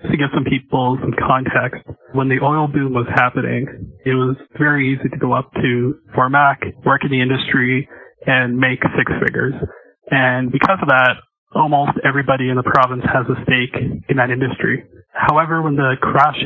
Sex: male